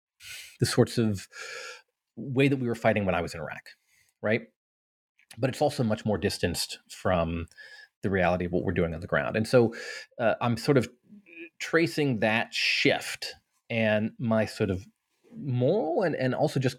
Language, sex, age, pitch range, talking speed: English, male, 30-49, 90-115 Hz, 170 wpm